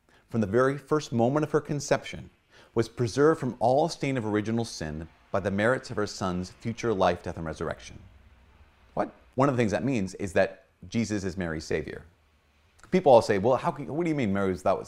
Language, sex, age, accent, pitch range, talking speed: English, male, 30-49, American, 95-125 Hz, 210 wpm